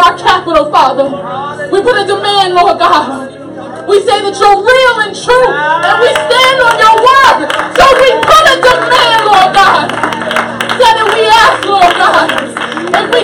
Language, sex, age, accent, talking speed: English, female, 20-39, American, 170 wpm